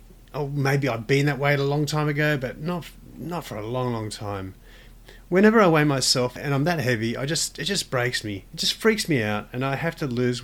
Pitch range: 115-145 Hz